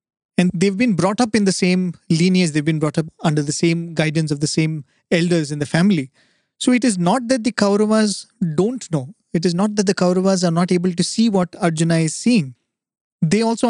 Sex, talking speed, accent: male, 220 wpm, Indian